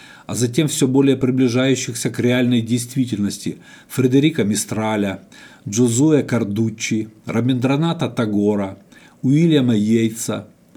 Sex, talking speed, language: male, 90 wpm, Russian